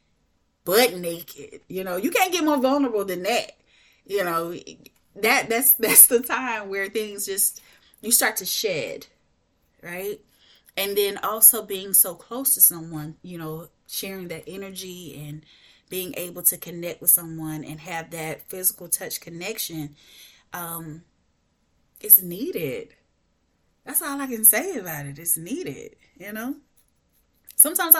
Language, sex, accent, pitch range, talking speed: English, female, American, 180-265 Hz, 145 wpm